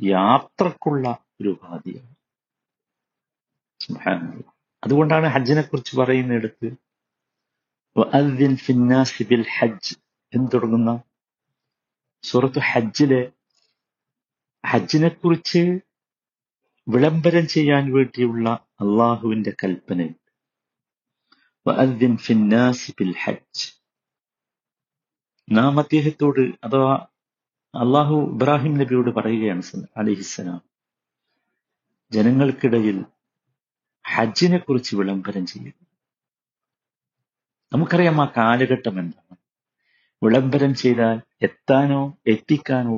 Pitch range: 115-145 Hz